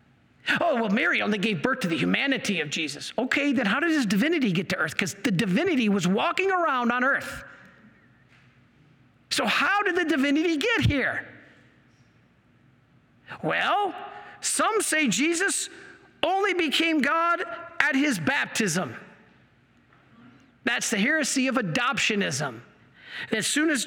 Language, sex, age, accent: English, male, 50-69, American